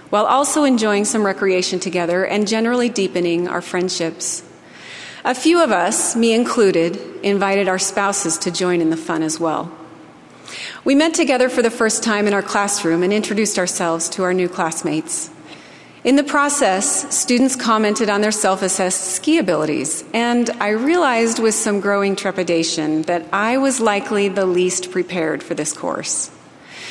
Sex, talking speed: female, 155 wpm